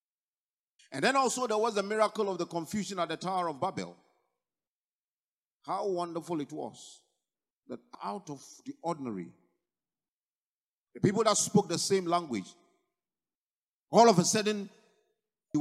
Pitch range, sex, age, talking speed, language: 155-215 Hz, male, 50-69, 140 wpm, English